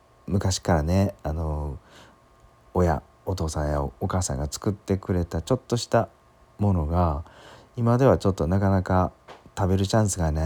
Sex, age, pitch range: male, 40-59, 75-110 Hz